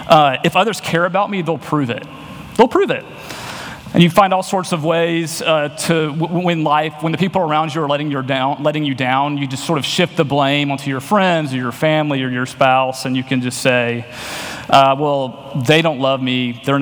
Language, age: English, 30-49